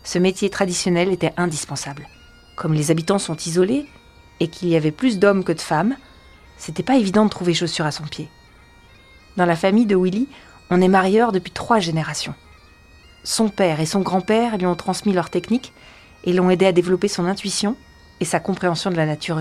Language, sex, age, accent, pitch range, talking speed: French, female, 40-59, French, 160-205 Hz, 190 wpm